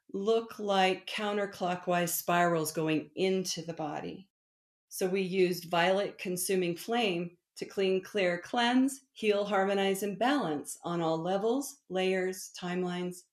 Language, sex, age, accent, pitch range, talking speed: English, female, 50-69, American, 175-215 Hz, 120 wpm